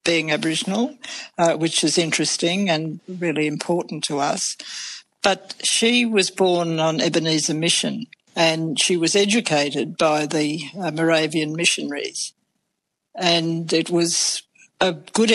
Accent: Australian